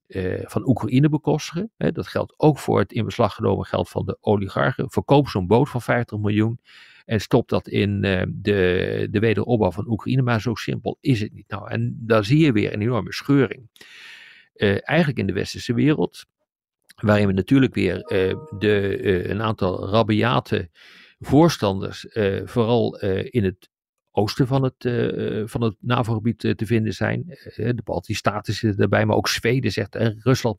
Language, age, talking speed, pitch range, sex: Dutch, 50-69, 180 wpm, 100-130 Hz, male